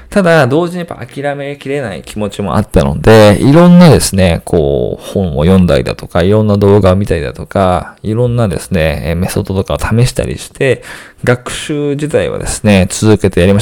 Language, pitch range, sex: Japanese, 95-130 Hz, male